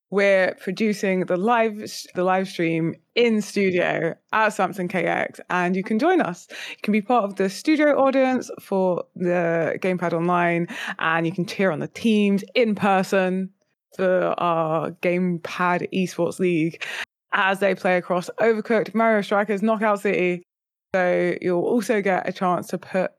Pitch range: 175-230 Hz